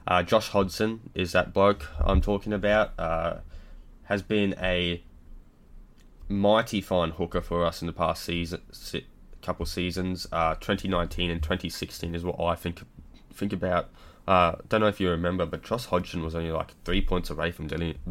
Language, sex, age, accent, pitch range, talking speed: English, male, 20-39, Australian, 80-90 Hz, 170 wpm